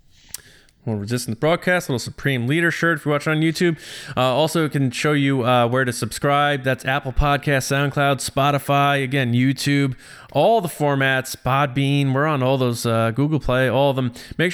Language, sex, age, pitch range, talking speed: English, male, 20-39, 120-145 Hz, 180 wpm